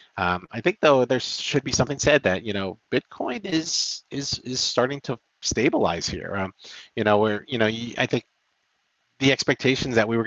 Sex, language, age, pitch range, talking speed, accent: male, English, 40-59, 100-120 Hz, 195 wpm, American